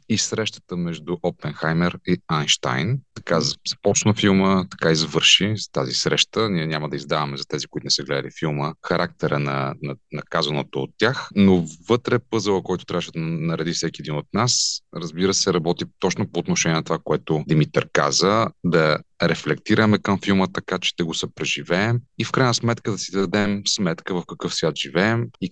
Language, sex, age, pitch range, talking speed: Bulgarian, male, 30-49, 80-105 Hz, 180 wpm